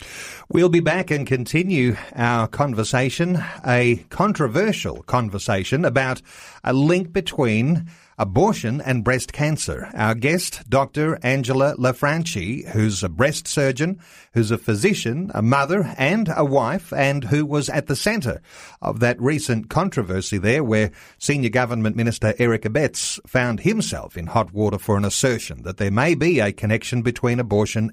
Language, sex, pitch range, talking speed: English, male, 110-150 Hz, 145 wpm